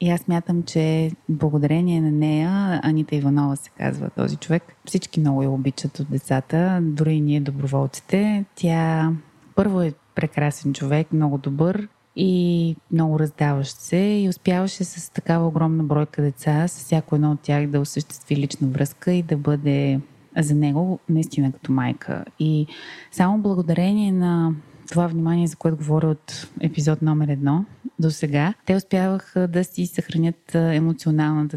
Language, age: Bulgarian, 20-39